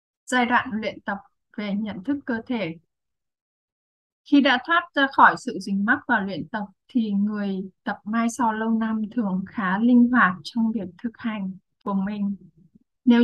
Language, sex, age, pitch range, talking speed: Vietnamese, female, 20-39, 195-250 Hz, 170 wpm